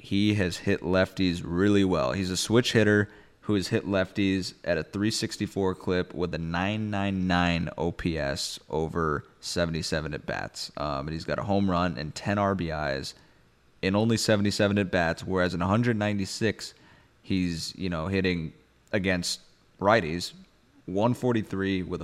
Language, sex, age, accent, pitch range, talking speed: English, male, 20-39, American, 90-110 Hz, 140 wpm